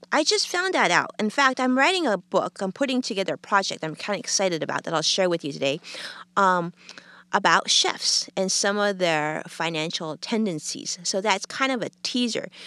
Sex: female